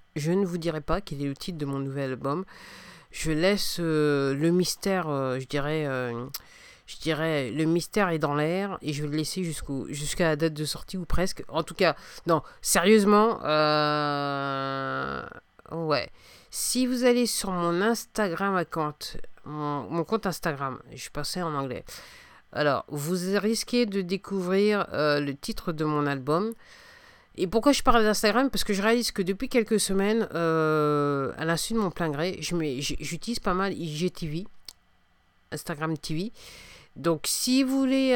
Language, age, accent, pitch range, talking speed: English, 50-69, French, 145-195 Hz, 170 wpm